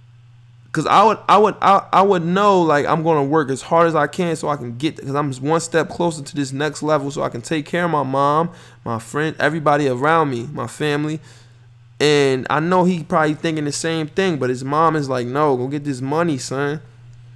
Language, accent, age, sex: English, American, 20-39, male